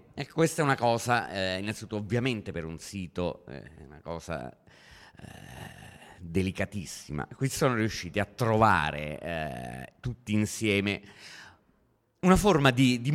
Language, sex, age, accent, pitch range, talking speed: Italian, male, 30-49, native, 95-140 Hz, 130 wpm